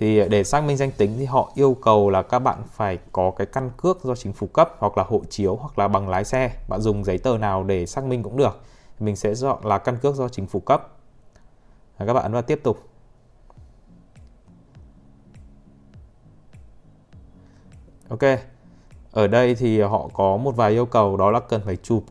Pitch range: 100-125 Hz